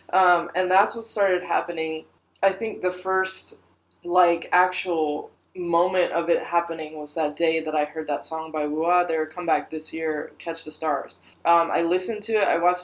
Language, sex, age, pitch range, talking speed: English, female, 20-39, 160-200 Hz, 185 wpm